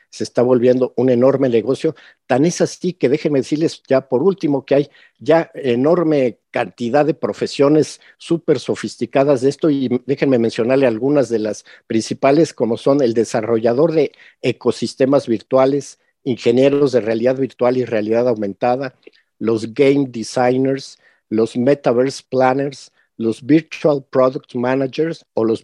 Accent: Mexican